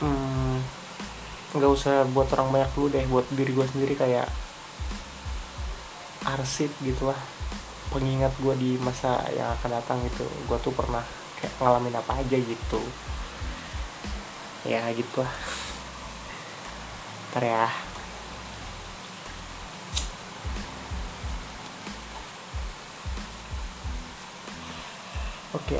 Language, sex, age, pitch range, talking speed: Indonesian, male, 20-39, 115-135 Hz, 85 wpm